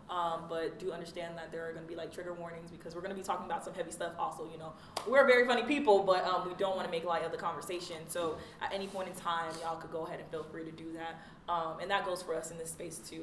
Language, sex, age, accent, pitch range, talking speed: English, female, 20-39, American, 165-185 Hz, 305 wpm